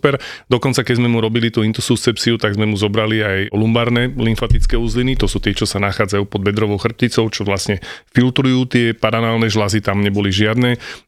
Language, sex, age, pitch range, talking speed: Slovak, male, 30-49, 110-140 Hz, 185 wpm